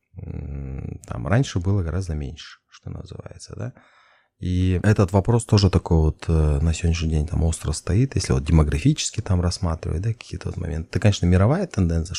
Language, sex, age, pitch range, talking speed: Russian, male, 30-49, 80-105 Hz, 165 wpm